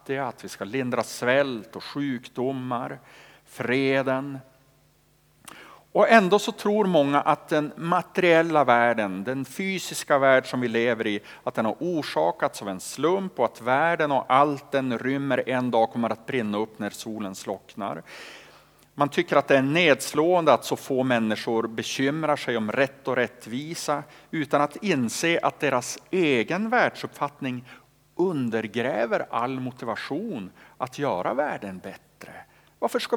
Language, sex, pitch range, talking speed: Swedish, male, 120-160 Hz, 145 wpm